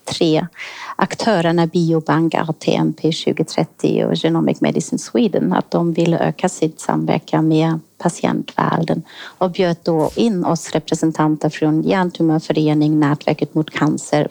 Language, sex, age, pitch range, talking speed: Swedish, female, 30-49, 160-195 Hz, 115 wpm